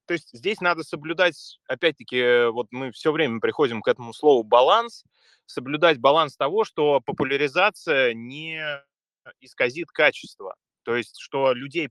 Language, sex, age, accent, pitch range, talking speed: Russian, male, 20-39, native, 115-165 Hz, 135 wpm